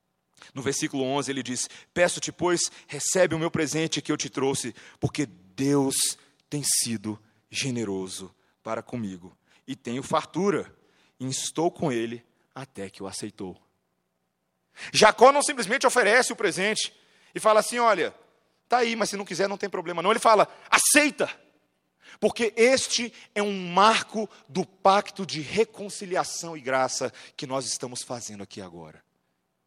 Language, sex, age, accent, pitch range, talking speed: Portuguese, male, 40-59, Brazilian, 130-205 Hz, 150 wpm